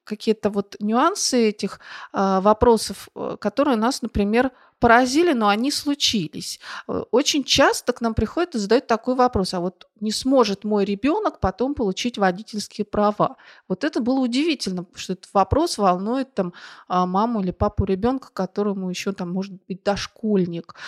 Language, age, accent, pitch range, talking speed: Russian, 30-49, native, 190-235 Hz, 145 wpm